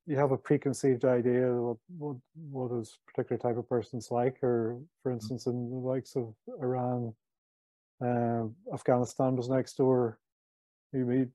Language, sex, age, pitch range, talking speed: English, male, 30-49, 120-135 Hz, 165 wpm